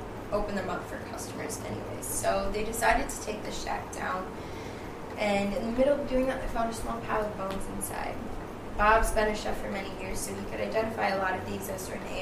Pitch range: 200-235 Hz